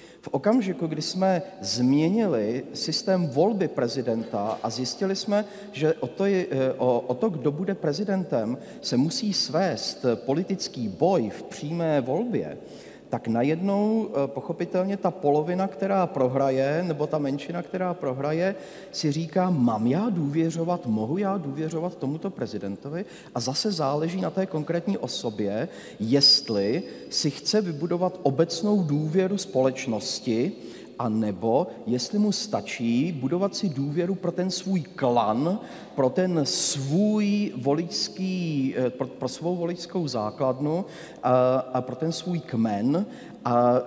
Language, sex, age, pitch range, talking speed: Czech, male, 40-59, 135-185 Hz, 125 wpm